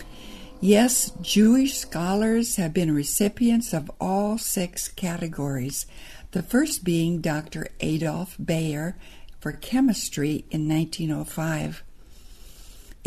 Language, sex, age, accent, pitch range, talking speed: English, female, 60-79, American, 155-210 Hz, 90 wpm